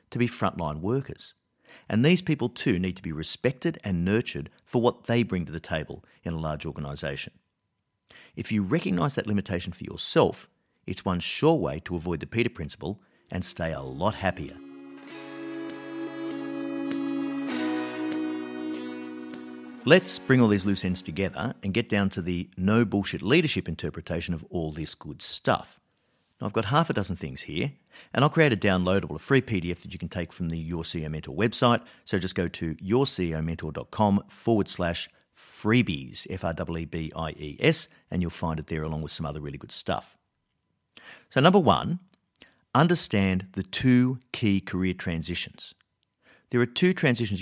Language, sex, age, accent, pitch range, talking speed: English, male, 50-69, Australian, 80-115 Hz, 155 wpm